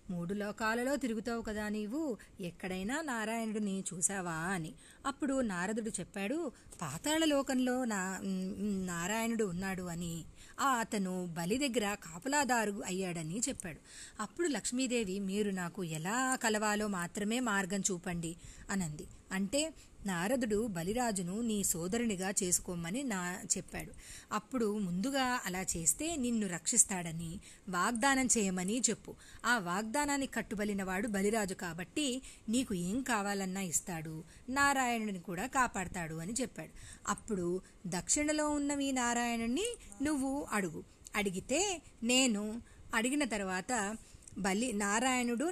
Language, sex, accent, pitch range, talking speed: Telugu, female, native, 185-245 Hz, 100 wpm